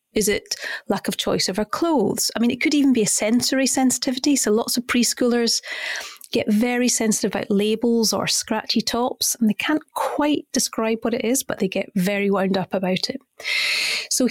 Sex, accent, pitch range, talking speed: female, British, 210-260 Hz, 195 wpm